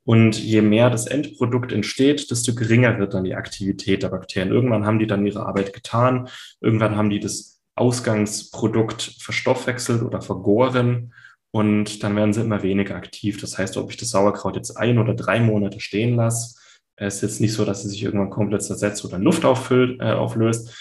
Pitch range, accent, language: 100-120 Hz, German, German